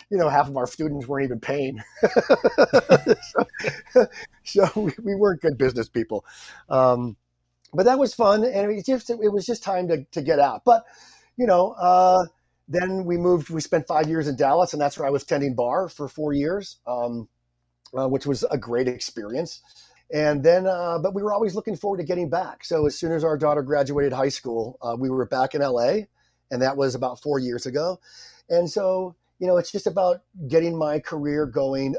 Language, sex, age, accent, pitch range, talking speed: English, male, 40-59, American, 130-175 Hz, 205 wpm